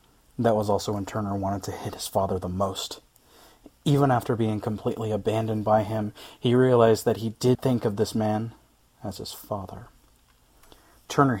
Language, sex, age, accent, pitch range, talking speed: English, male, 30-49, American, 95-115 Hz, 170 wpm